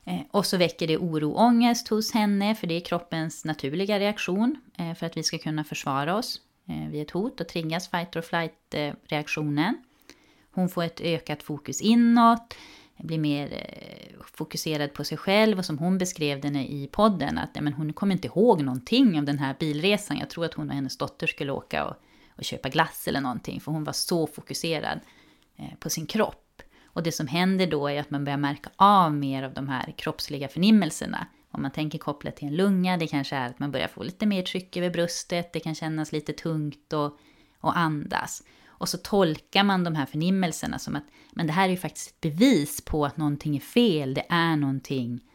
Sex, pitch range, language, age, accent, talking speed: female, 145-190 Hz, Swedish, 30-49, native, 200 wpm